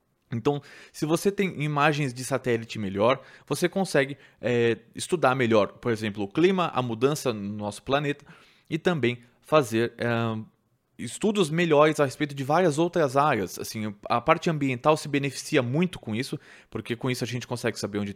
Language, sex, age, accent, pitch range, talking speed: Portuguese, male, 20-39, Brazilian, 120-150 Hz, 160 wpm